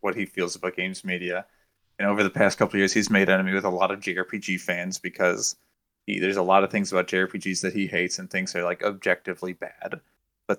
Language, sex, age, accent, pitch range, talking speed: English, male, 20-39, American, 90-110 Hz, 225 wpm